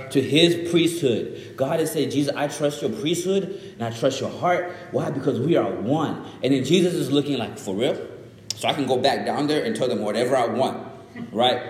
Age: 30-49